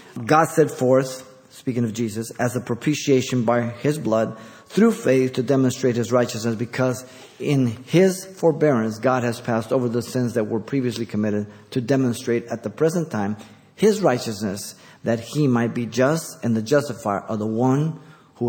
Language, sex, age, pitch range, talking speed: English, male, 50-69, 115-150 Hz, 170 wpm